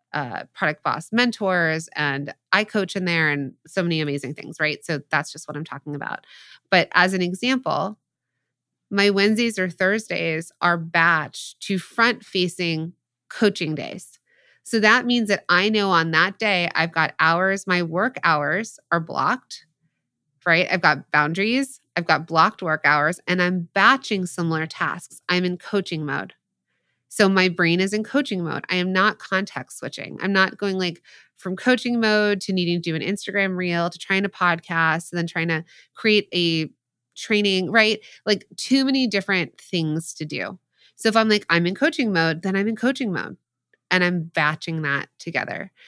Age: 20-39